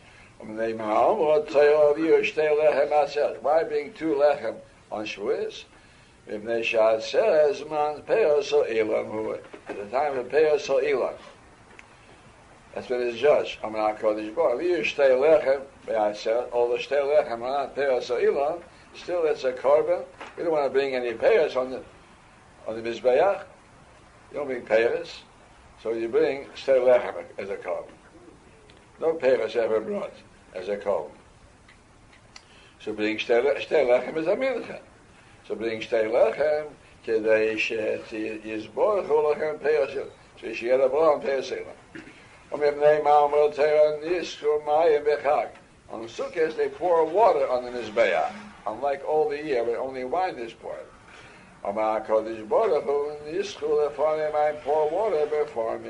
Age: 60-79